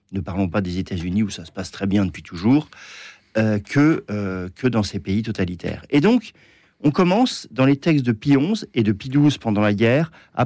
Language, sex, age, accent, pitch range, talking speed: French, male, 50-69, French, 105-145 Hz, 230 wpm